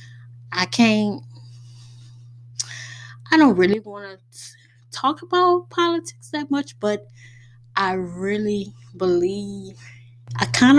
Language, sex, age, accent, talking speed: English, female, 10-29, American, 100 wpm